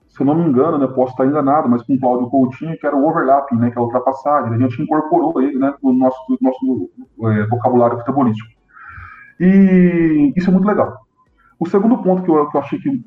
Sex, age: male, 20-39